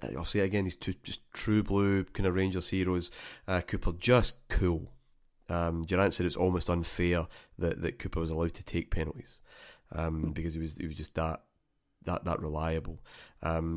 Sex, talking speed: male, 185 wpm